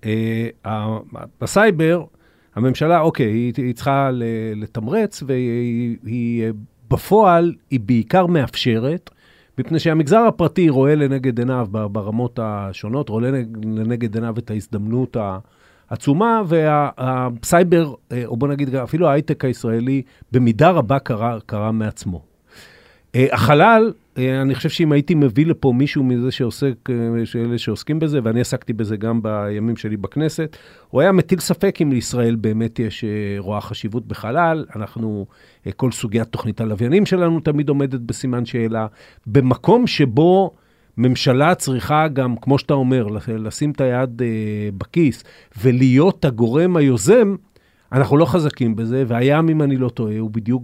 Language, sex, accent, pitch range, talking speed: Hebrew, male, native, 115-150 Hz, 125 wpm